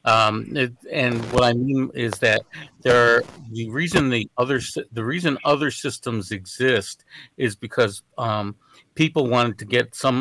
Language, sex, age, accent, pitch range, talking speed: English, male, 50-69, American, 115-135 Hz, 160 wpm